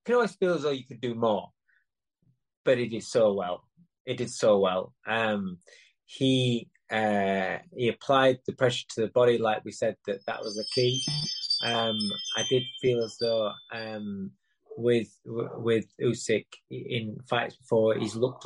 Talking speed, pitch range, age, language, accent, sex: 165 wpm, 115-165 Hz, 20-39, English, British, male